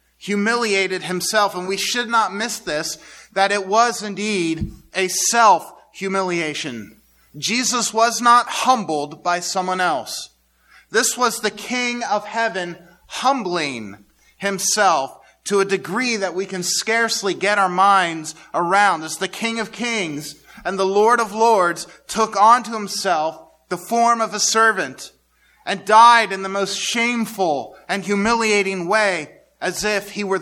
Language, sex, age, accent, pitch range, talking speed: English, male, 30-49, American, 180-220 Hz, 140 wpm